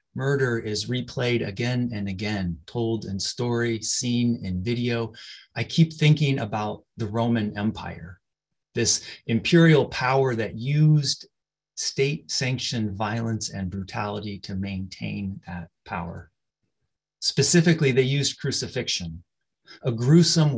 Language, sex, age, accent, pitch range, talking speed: English, male, 30-49, American, 100-140 Hz, 110 wpm